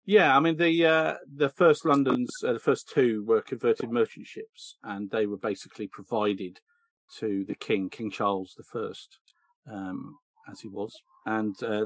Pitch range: 100-130 Hz